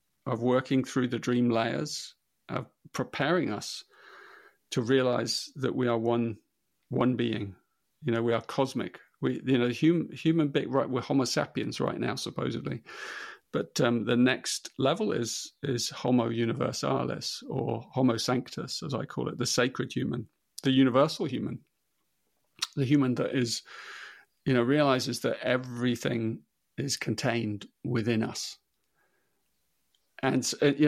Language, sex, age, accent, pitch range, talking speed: English, male, 40-59, British, 120-140 Hz, 140 wpm